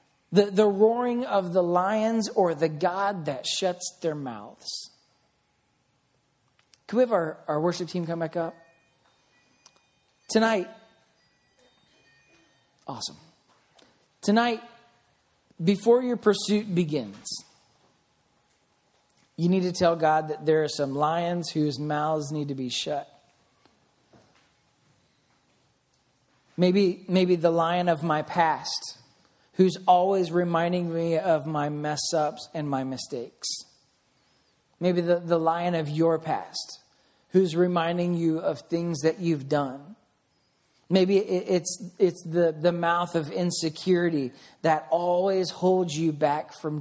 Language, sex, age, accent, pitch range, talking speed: English, male, 40-59, American, 155-185 Hz, 120 wpm